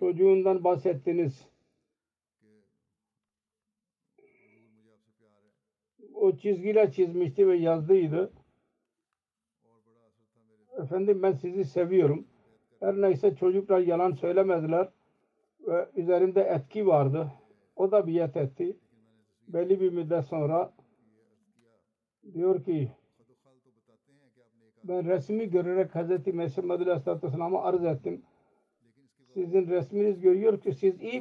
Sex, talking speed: male, 85 wpm